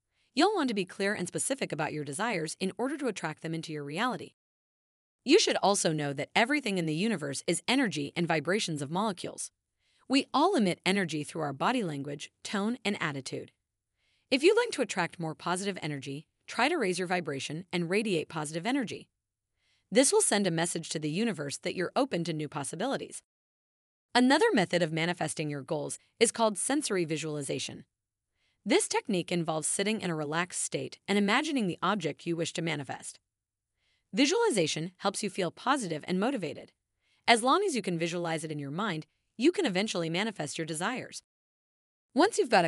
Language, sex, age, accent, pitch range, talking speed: English, female, 30-49, American, 155-230 Hz, 180 wpm